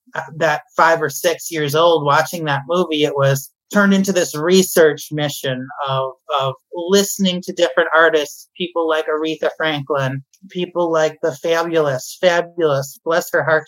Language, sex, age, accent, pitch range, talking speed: English, male, 30-49, American, 145-180 Hz, 150 wpm